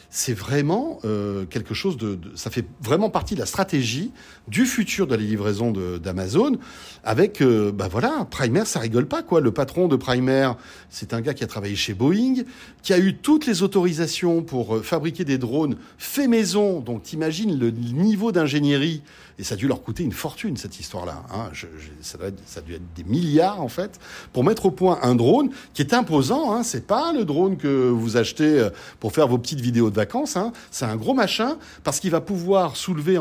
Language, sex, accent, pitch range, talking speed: French, male, French, 115-190 Hz, 210 wpm